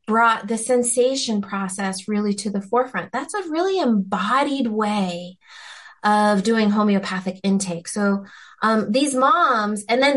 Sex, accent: female, American